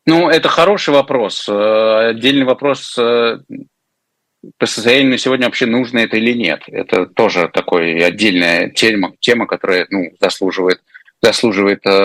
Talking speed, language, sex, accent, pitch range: 120 wpm, Russian, male, native, 95-125 Hz